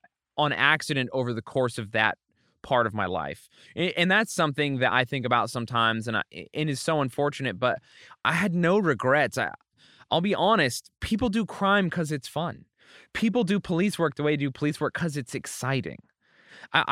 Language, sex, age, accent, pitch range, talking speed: English, male, 20-39, American, 125-165 Hz, 185 wpm